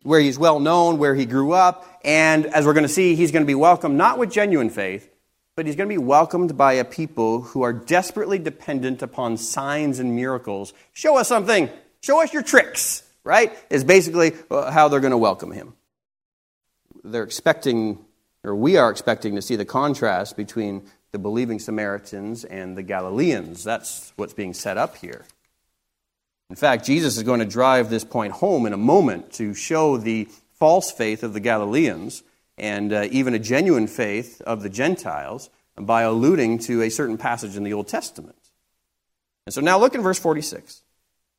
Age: 30-49